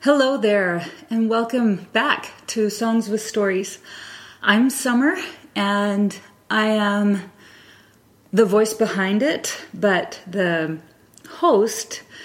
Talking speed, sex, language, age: 105 wpm, female, English, 30-49